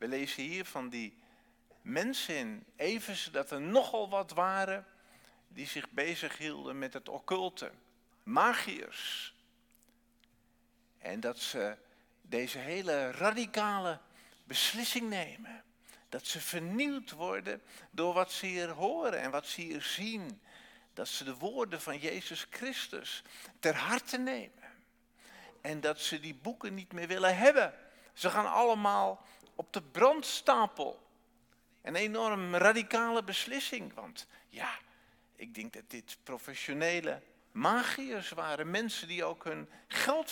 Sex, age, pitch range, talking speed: male, 50-69, 165-240 Hz, 130 wpm